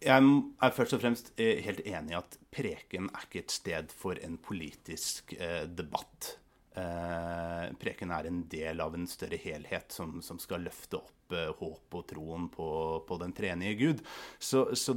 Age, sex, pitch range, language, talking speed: 30-49, male, 95-125 Hz, English, 175 wpm